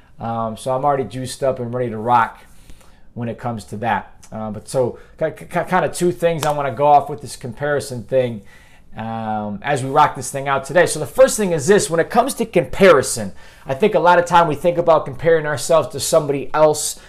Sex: male